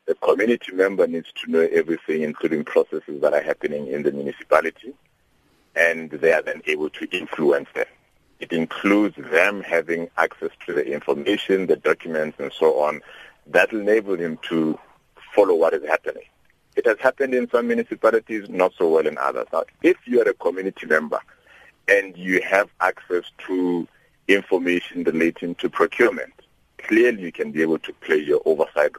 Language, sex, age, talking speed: English, male, 50-69, 165 wpm